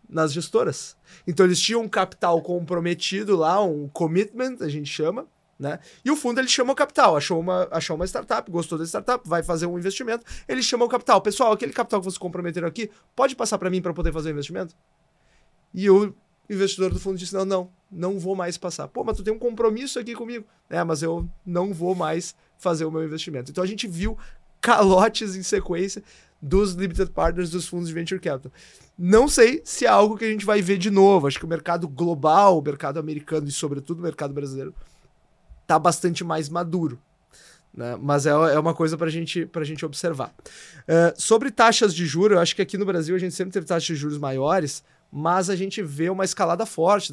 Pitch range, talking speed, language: 160-195 Hz, 210 wpm, Portuguese